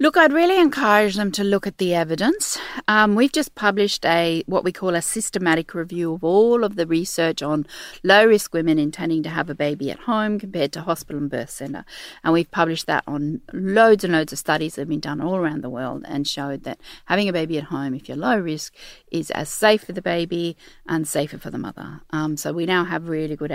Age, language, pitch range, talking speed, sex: 40-59, English, 160-215 Hz, 225 wpm, female